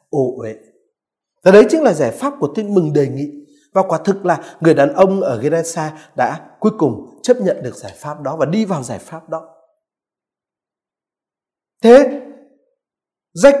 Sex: male